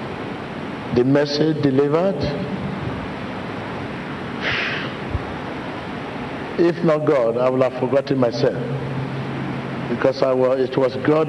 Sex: male